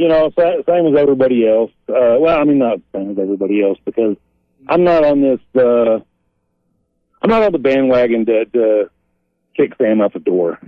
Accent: American